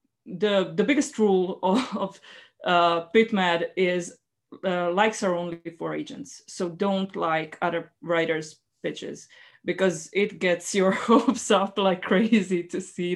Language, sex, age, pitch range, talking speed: English, female, 20-39, 170-200 Hz, 135 wpm